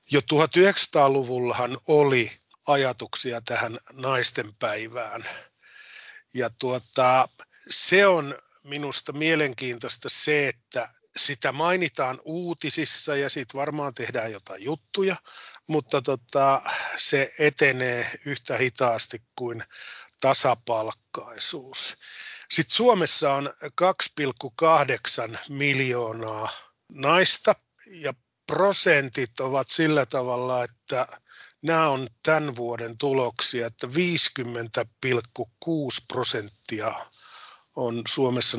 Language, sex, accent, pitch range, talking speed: Finnish, male, native, 120-150 Hz, 80 wpm